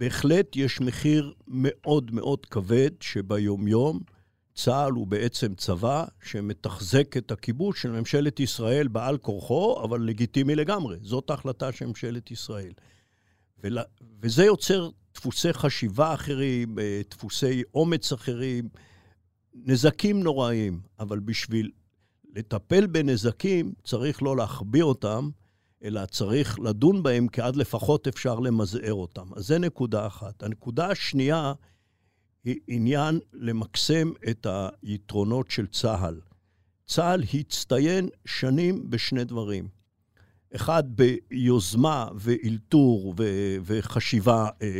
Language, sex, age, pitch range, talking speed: Hebrew, male, 60-79, 105-140 Hz, 105 wpm